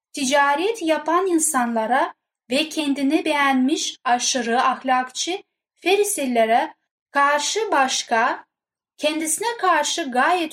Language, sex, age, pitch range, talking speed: Turkish, female, 10-29, 250-335 Hz, 80 wpm